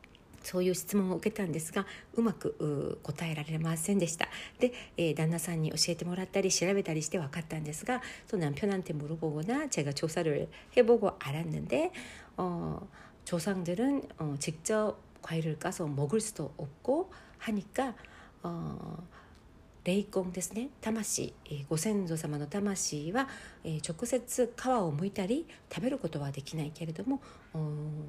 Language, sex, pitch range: Korean, female, 155-210 Hz